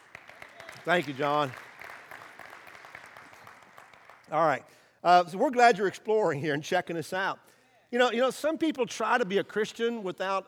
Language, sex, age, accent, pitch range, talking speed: English, male, 50-69, American, 175-230 Hz, 155 wpm